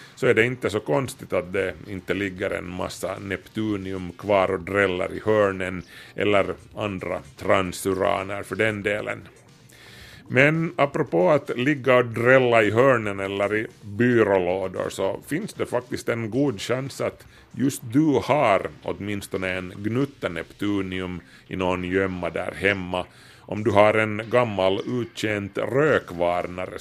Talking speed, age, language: 140 wpm, 30-49, Swedish